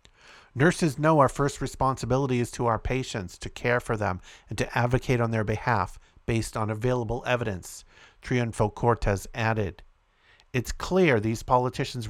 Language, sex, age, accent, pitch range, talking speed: English, male, 50-69, American, 105-130 Hz, 145 wpm